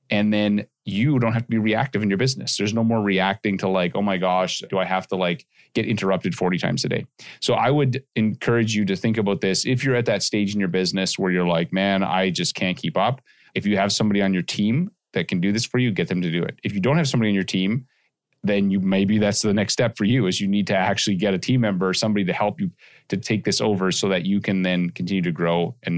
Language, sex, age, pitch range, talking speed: English, male, 30-49, 95-115 Hz, 275 wpm